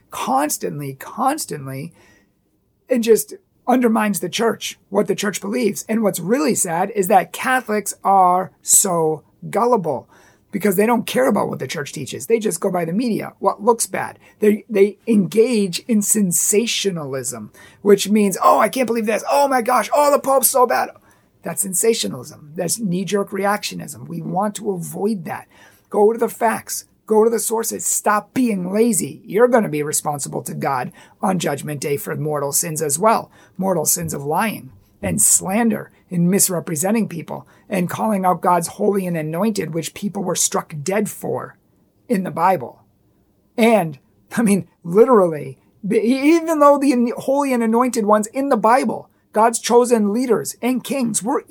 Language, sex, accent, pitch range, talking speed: English, male, American, 170-230 Hz, 165 wpm